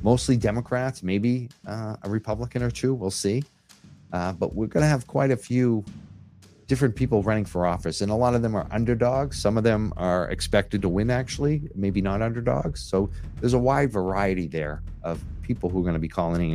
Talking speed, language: 205 wpm, English